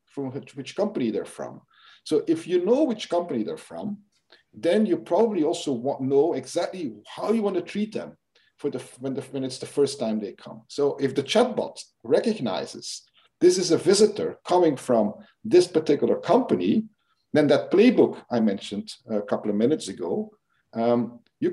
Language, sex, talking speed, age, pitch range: English, male, 180 wpm, 50-69, 120-180 Hz